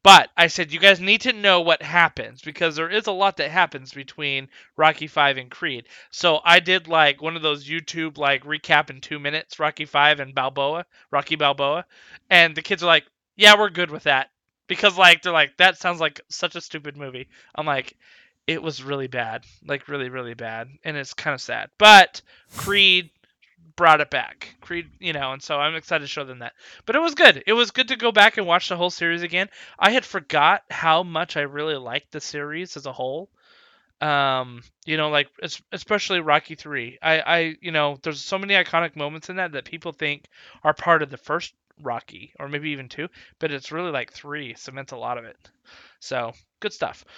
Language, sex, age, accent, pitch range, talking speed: English, male, 20-39, American, 145-180 Hz, 210 wpm